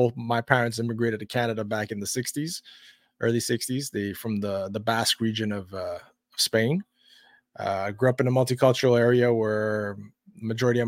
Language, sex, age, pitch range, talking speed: English, male, 20-39, 105-125 Hz, 180 wpm